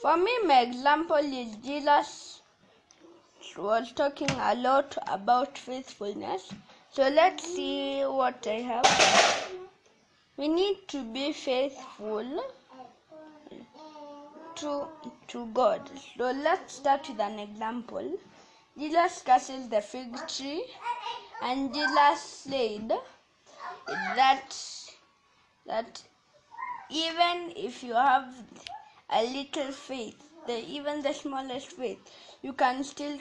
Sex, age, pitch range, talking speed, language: female, 20-39, 255-315 Hz, 100 wpm, English